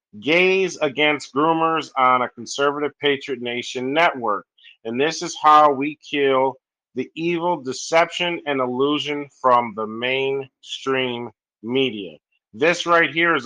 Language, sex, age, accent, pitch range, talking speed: English, male, 40-59, American, 125-150 Hz, 125 wpm